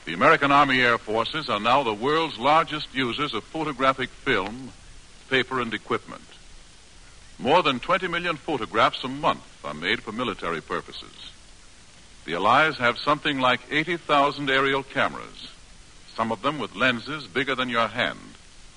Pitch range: 110-150 Hz